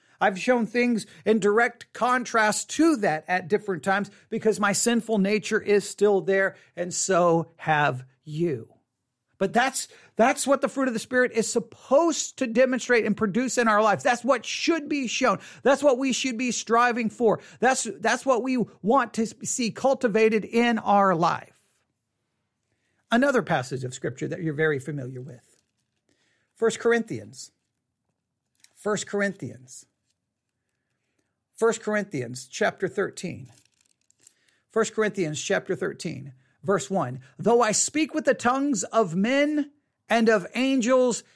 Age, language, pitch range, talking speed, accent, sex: 40-59, English, 185-245 Hz, 140 wpm, American, male